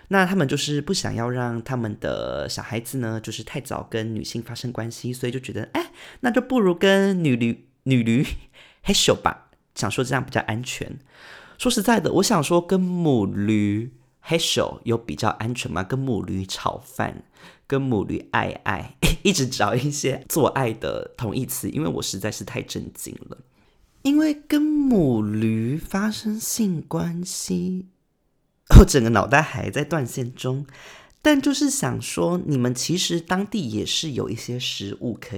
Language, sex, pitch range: Chinese, male, 115-180 Hz